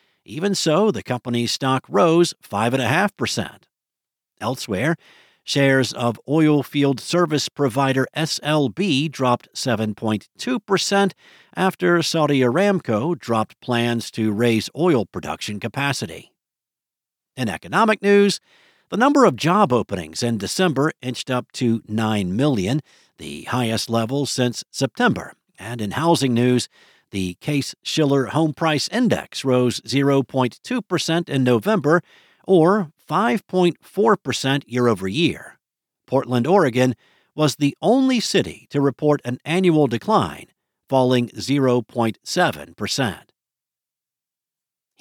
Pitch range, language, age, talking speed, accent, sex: 120-175 Hz, English, 50-69, 105 wpm, American, male